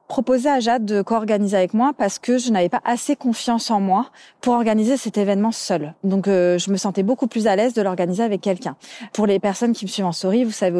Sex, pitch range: female, 180-225 Hz